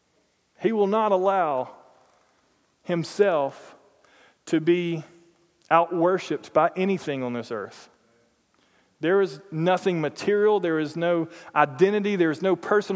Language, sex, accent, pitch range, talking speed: English, male, American, 160-205 Hz, 115 wpm